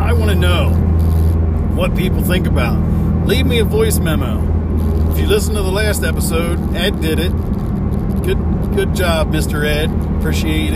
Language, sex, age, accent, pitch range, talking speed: English, male, 40-59, American, 80-95 Hz, 160 wpm